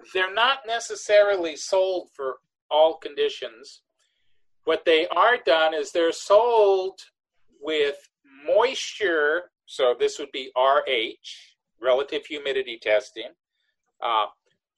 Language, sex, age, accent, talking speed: English, male, 50-69, American, 100 wpm